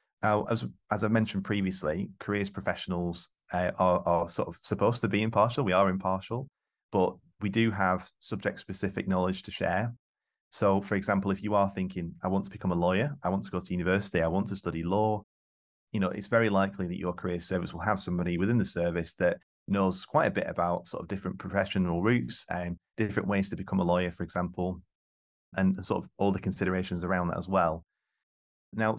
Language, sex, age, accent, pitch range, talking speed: English, male, 30-49, British, 85-105 Hz, 205 wpm